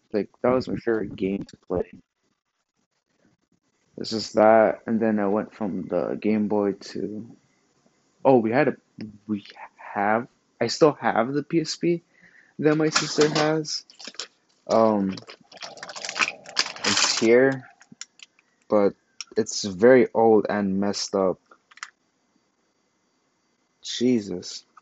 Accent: American